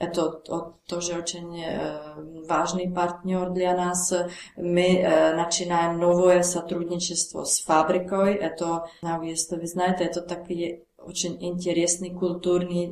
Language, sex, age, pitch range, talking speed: Russian, female, 30-49, 160-175 Hz, 165 wpm